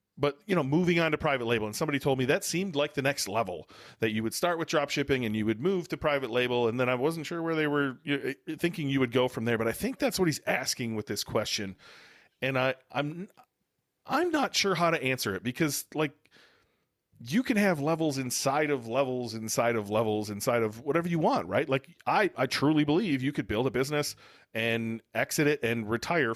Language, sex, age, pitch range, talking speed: English, male, 40-59, 115-150 Hz, 225 wpm